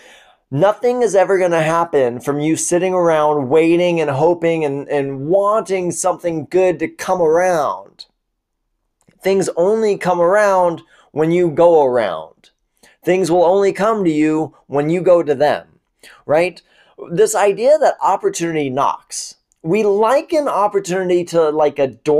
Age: 20-39